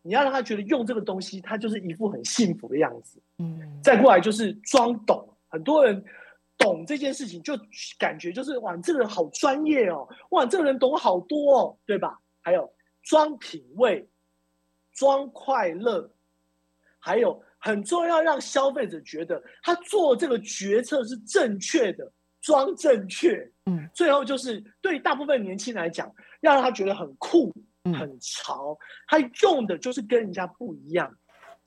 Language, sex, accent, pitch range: Chinese, male, native, 180-275 Hz